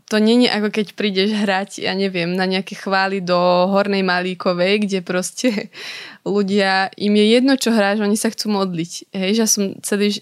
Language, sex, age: Slovak, female, 20-39